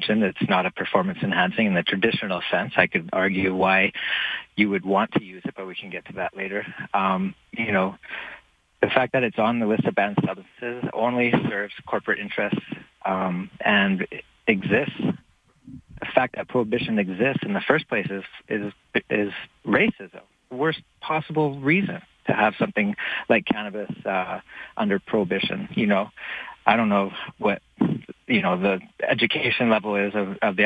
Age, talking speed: 40-59, 165 wpm